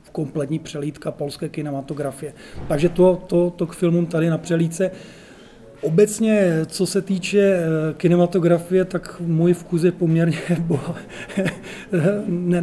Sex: male